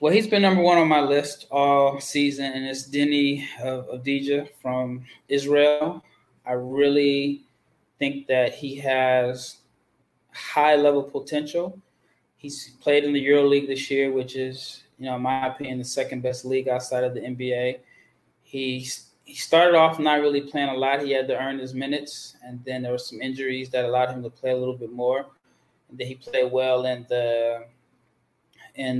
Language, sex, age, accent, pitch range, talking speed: English, male, 20-39, American, 125-140 Hz, 175 wpm